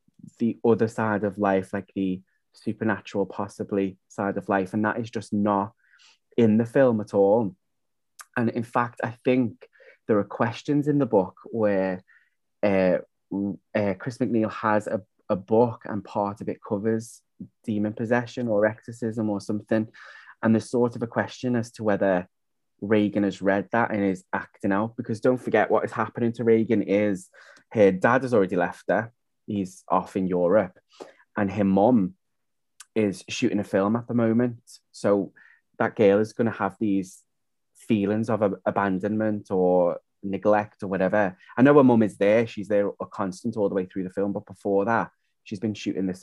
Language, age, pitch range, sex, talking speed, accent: English, 20-39, 100-115 Hz, male, 180 wpm, British